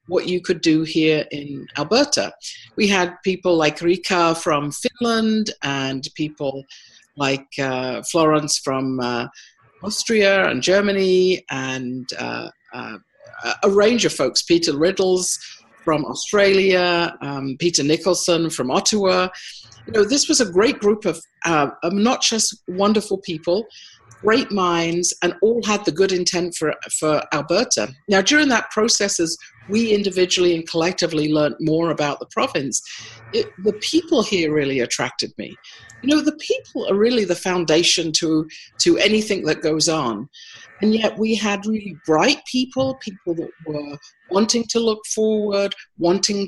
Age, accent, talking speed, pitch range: 50-69, British, 145 wpm, 155-215 Hz